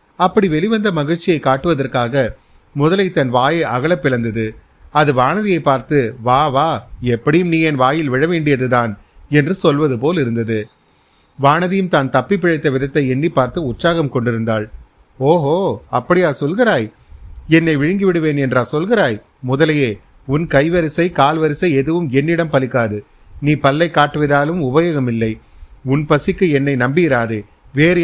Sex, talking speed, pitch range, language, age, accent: male, 120 wpm, 130-165 Hz, Tamil, 30-49, native